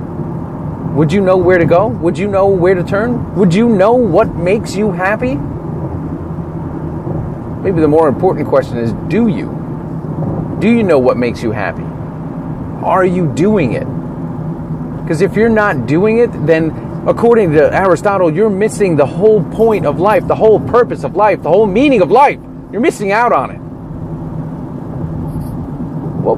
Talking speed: 160 wpm